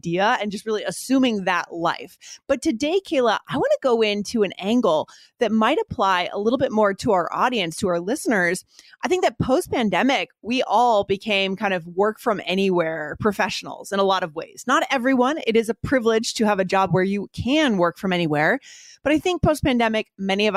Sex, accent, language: female, American, English